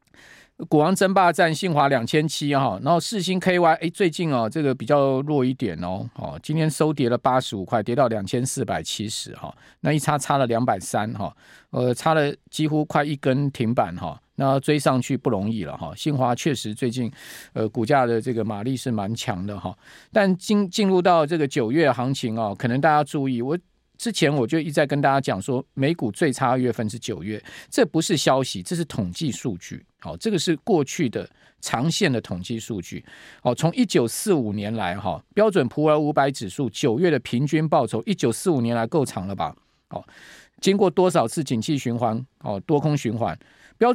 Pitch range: 120-160 Hz